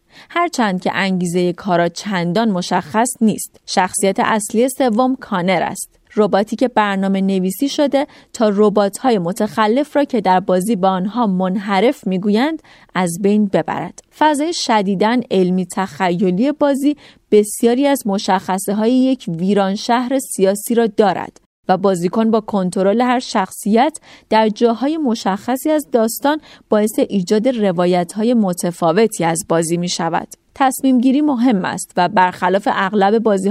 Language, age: Persian, 30-49